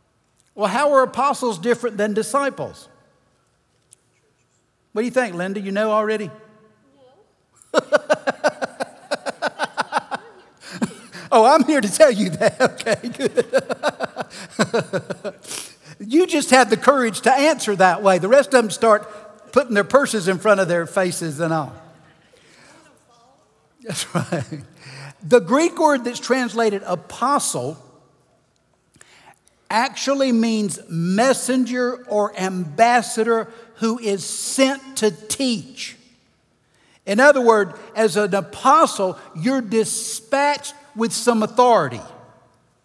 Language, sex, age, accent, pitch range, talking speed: English, male, 60-79, American, 200-250 Hz, 110 wpm